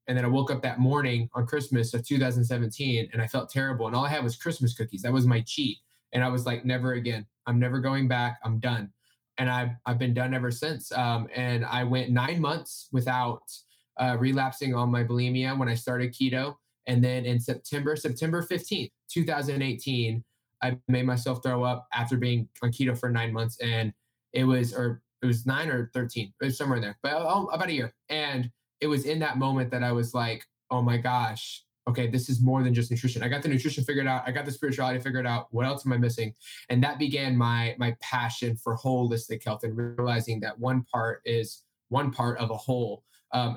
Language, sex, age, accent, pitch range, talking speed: English, male, 20-39, American, 120-130 Hz, 215 wpm